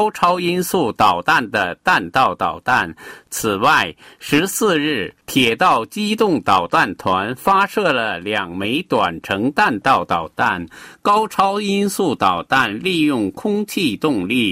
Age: 50-69